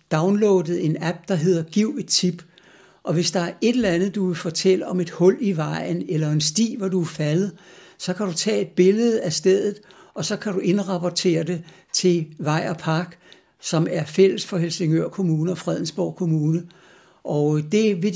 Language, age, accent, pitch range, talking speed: Danish, 60-79, native, 160-190 Hz, 200 wpm